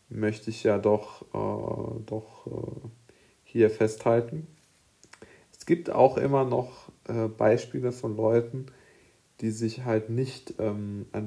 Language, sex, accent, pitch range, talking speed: German, male, German, 110-125 Hz, 130 wpm